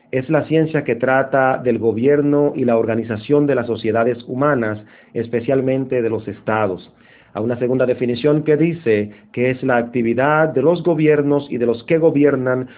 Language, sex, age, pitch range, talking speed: Spanish, male, 40-59, 115-145 Hz, 170 wpm